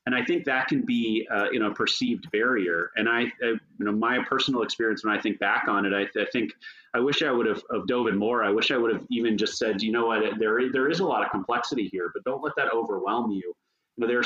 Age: 30-49